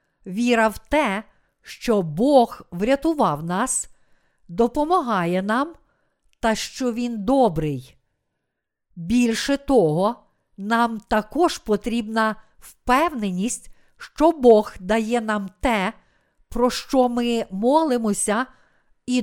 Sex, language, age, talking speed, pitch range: female, Ukrainian, 50-69, 90 wpm, 195-260 Hz